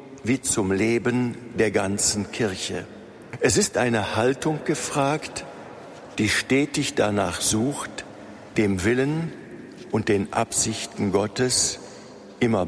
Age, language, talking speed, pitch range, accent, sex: 50-69, German, 105 wpm, 105-125 Hz, German, male